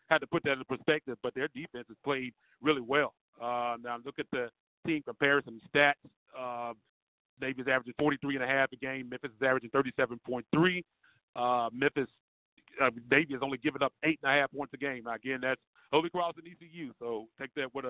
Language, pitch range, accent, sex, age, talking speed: English, 125-145 Hz, American, male, 40-59, 180 wpm